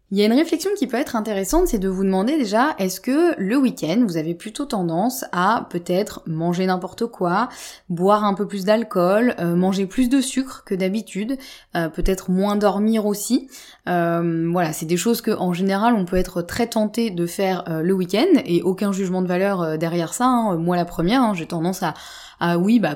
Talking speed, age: 210 wpm, 20-39